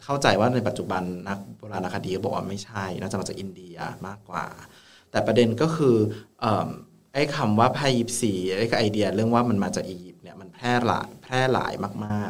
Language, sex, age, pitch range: Thai, male, 20-39, 100-120 Hz